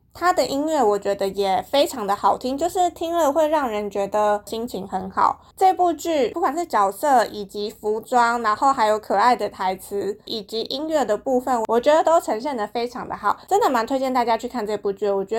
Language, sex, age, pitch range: Chinese, female, 20-39, 210-290 Hz